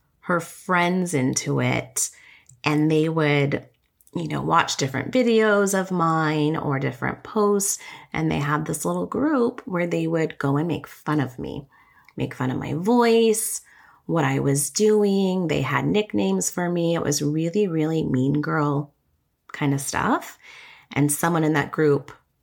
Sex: female